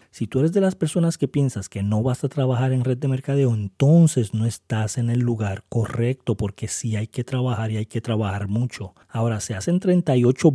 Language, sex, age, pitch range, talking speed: Spanish, male, 30-49, 110-140 Hz, 215 wpm